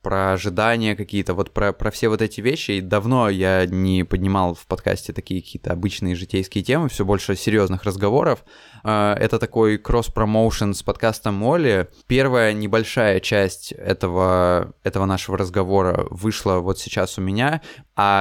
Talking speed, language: 145 wpm, Russian